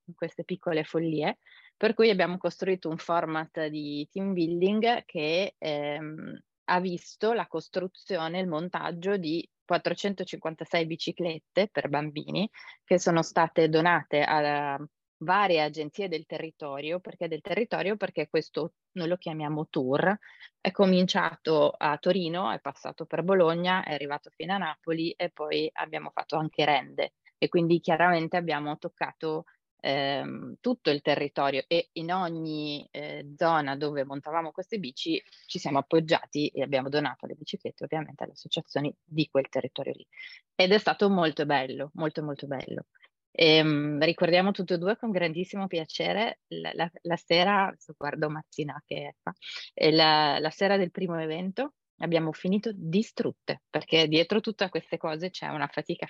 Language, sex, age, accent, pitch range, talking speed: Italian, female, 20-39, native, 150-185 Hz, 145 wpm